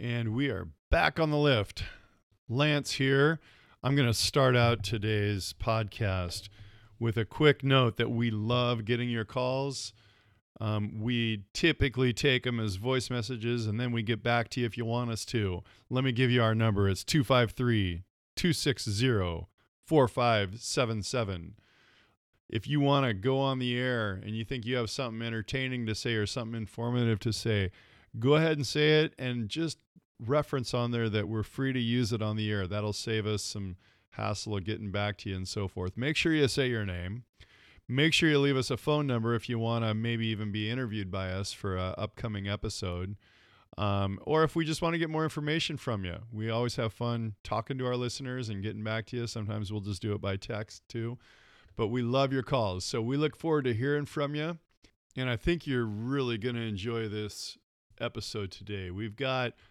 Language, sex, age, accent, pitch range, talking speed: English, male, 40-59, American, 105-130 Hz, 195 wpm